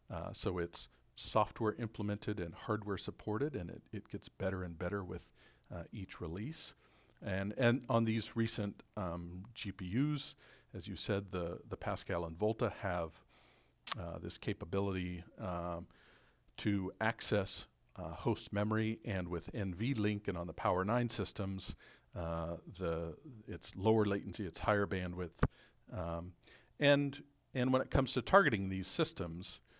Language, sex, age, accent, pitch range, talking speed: English, male, 50-69, American, 85-110 Hz, 140 wpm